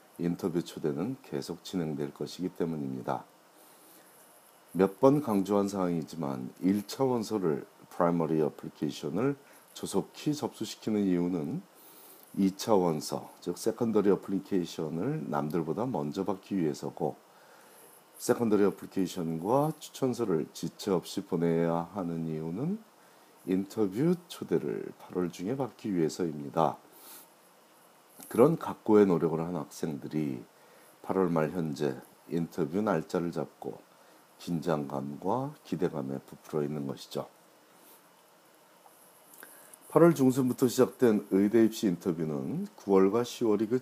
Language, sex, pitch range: Korean, male, 80-110 Hz